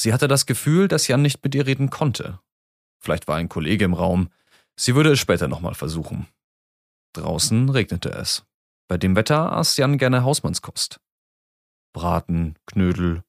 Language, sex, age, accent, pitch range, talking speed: German, male, 30-49, German, 90-135 Hz, 160 wpm